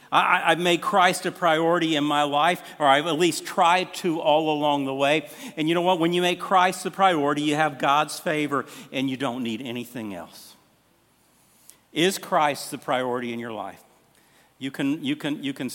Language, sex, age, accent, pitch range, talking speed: English, male, 50-69, American, 135-175 Hz, 185 wpm